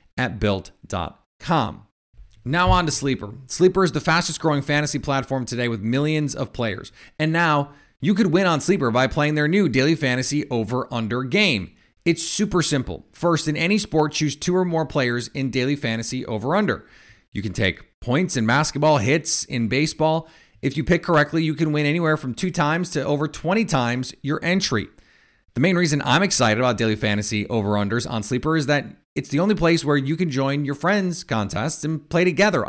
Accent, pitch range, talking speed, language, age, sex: American, 115-160 Hz, 195 wpm, English, 30-49, male